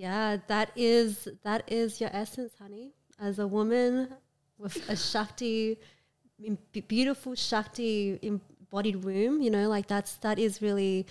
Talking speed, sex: 135 wpm, female